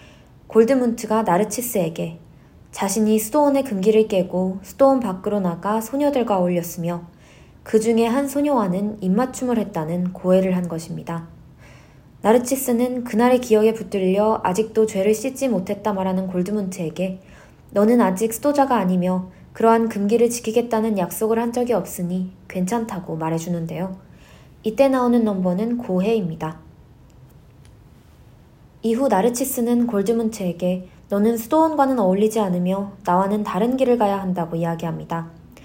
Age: 20-39